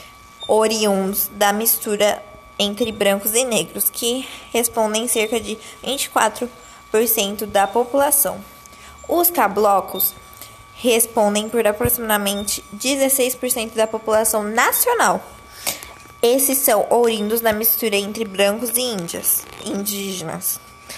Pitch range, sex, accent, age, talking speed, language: 200-235 Hz, female, Brazilian, 20-39, 90 wpm, Portuguese